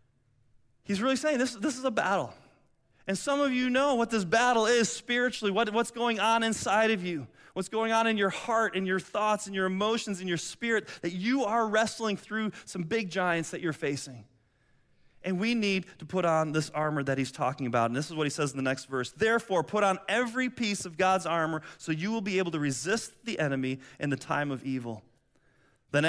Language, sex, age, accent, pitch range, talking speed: English, male, 30-49, American, 155-225 Hz, 220 wpm